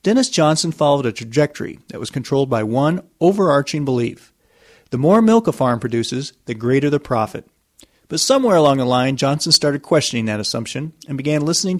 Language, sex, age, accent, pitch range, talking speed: English, male, 40-59, American, 125-160 Hz, 180 wpm